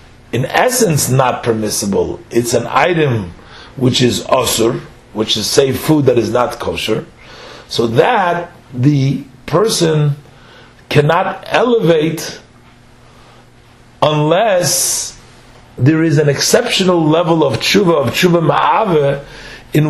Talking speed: 110 wpm